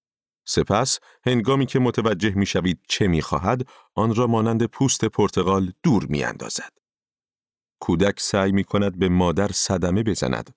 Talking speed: 140 wpm